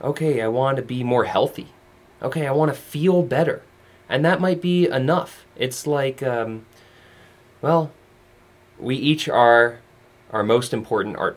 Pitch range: 115-170 Hz